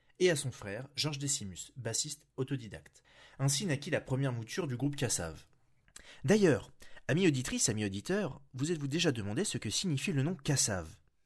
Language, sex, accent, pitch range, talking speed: French, male, French, 110-150 Hz, 165 wpm